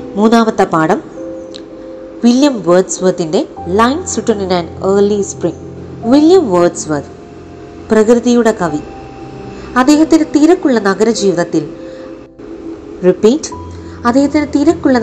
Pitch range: 180-255 Hz